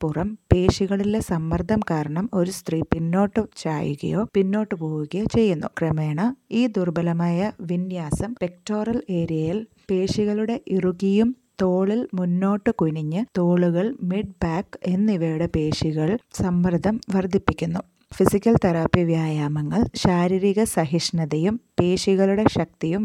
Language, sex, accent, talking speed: Malayalam, female, native, 95 wpm